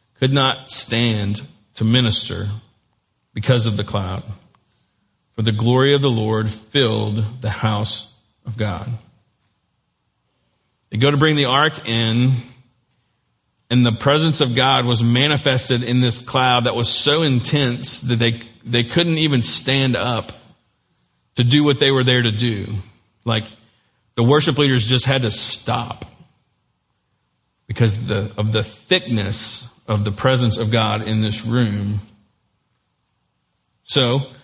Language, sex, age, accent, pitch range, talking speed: English, male, 40-59, American, 110-135 Hz, 135 wpm